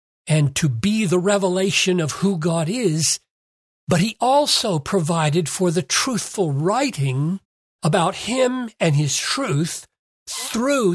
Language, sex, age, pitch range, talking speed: English, male, 60-79, 140-195 Hz, 125 wpm